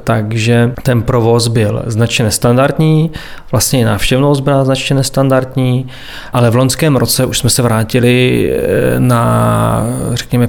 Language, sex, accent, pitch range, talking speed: Czech, male, native, 115-130 Hz, 125 wpm